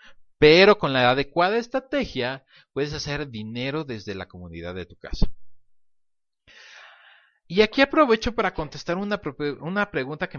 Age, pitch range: 40-59, 135-205 Hz